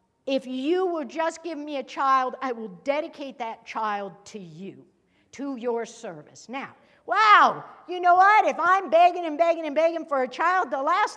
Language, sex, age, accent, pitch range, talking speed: English, female, 60-79, American, 255-355 Hz, 190 wpm